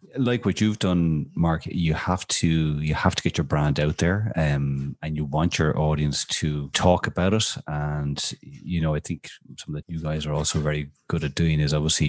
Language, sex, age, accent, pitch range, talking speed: English, male, 30-49, Irish, 75-85 Hz, 215 wpm